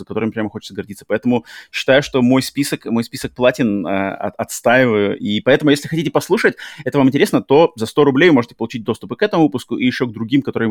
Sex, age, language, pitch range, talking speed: male, 30-49, Russian, 110-140 Hz, 220 wpm